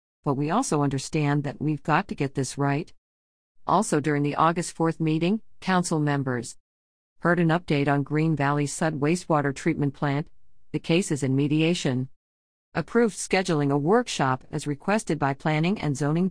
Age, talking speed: 50-69, 160 wpm